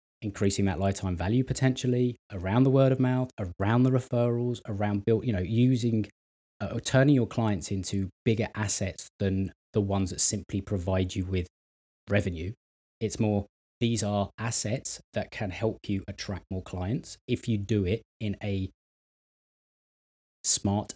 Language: English